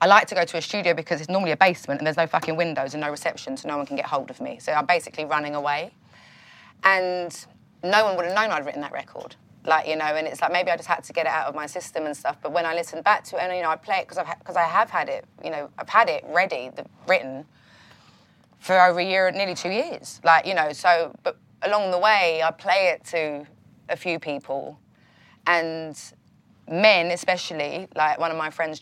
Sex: female